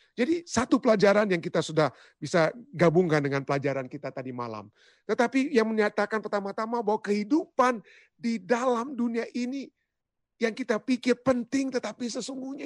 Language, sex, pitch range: Indonesian, male, 145-220 Hz